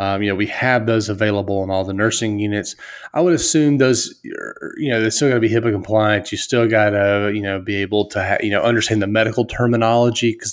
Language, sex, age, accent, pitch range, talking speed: English, male, 30-49, American, 100-120 Hz, 240 wpm